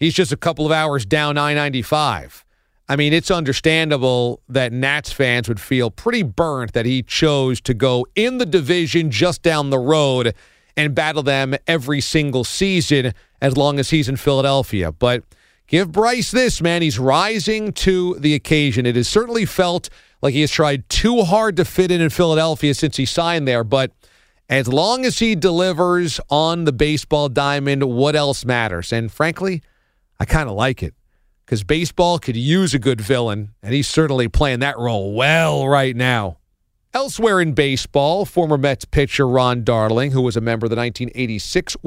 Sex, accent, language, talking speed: male, American, English, 175 wpm